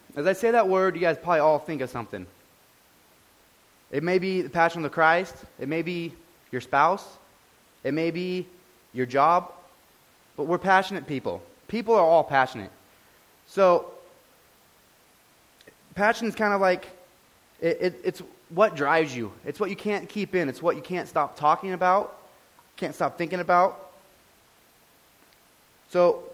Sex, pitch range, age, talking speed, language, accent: male, 140-185 Hz, 20-39, 155 wpm, English, American